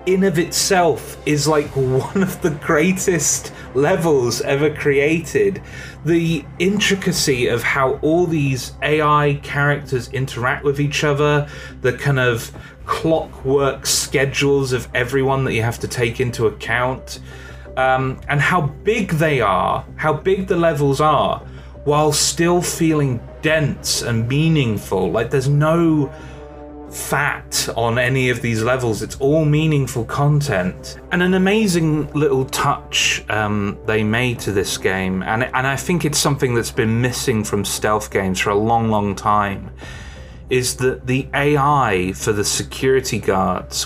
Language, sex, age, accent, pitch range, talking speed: English, male, 30-49, British, 115-150 Hz, 140 wpm